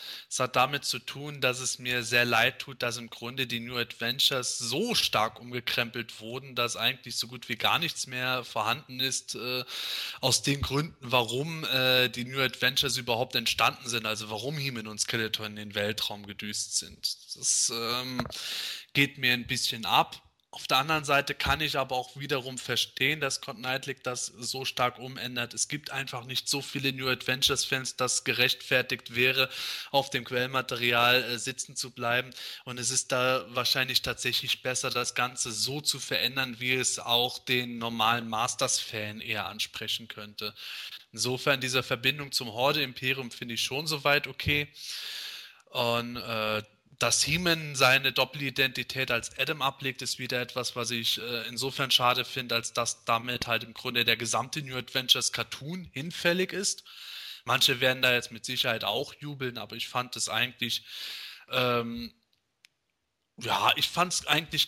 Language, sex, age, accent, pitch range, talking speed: German, male, 20-39, German, 120-135 Hz, 160 wpm